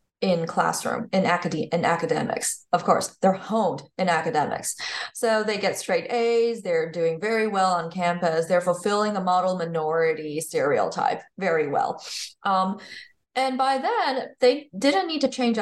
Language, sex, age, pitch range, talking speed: English, female, 20-39, 170-235 Hz, 155 wpm